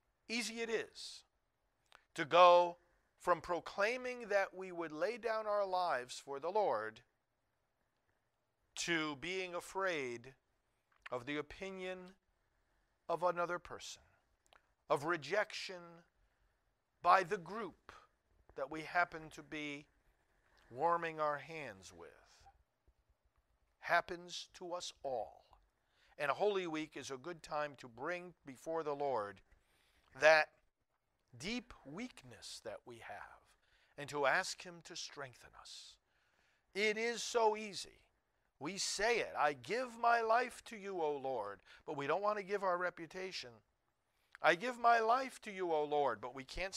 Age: 50-69